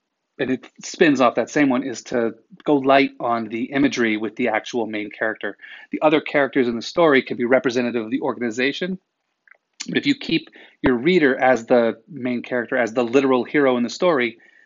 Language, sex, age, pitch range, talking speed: English, male, 30-49, 115-140 Hz, 195 wpm